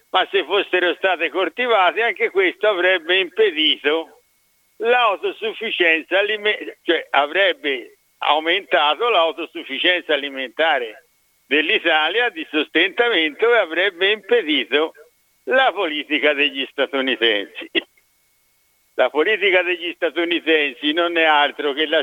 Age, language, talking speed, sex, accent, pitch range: 60-79, Italian, 95 wpm, male, native, 160-220 Hz